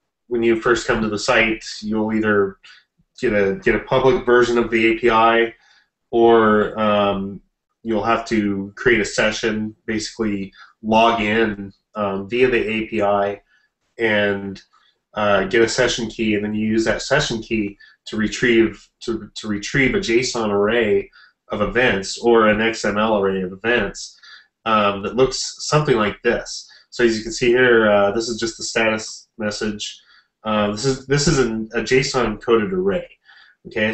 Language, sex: English, male